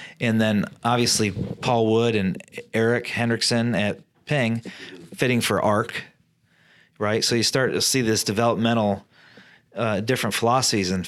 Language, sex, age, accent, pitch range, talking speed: English, male, 30-49, American, 105-125 Hz, 135 wpm